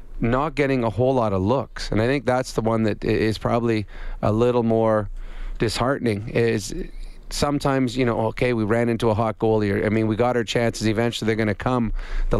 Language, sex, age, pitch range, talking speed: English, male, 30-49, 110-125 Hz, 215 wpm